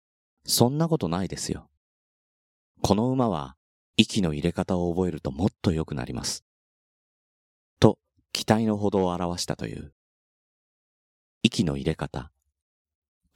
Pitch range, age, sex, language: 70-110 Hz, 30-49, male, Japanese